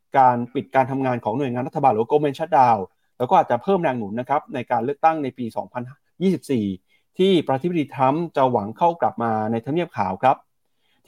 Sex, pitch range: male, 120-155 Hz